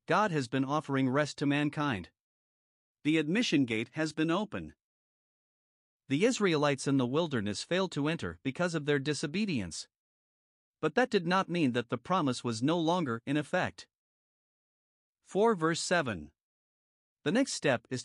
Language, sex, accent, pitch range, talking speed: English, male, American, 130-170 Hz, 150 wpm